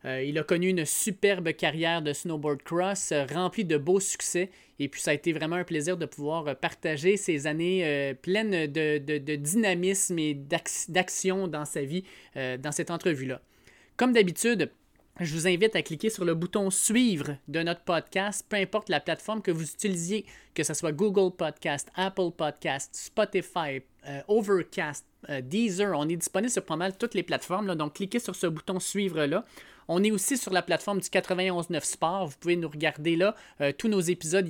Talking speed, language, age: 200 wpm, French, 20-39